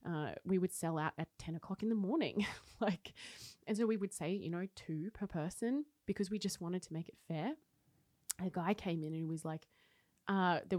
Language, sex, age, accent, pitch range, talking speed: English, female, 20-39, Australian, 160-200 Hz, 220 wpm